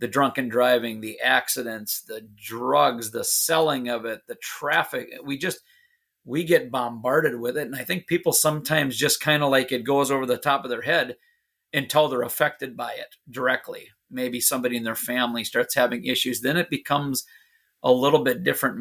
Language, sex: English, male